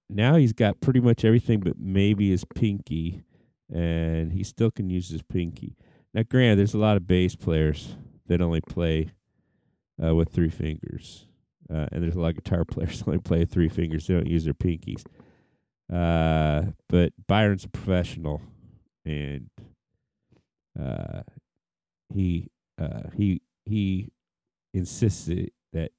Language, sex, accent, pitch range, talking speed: English, male, American, 80-105 Hz, 150 wpm